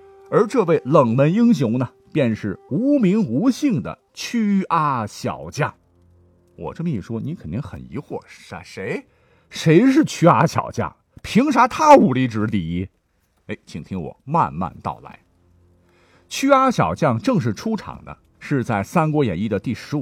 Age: 50-69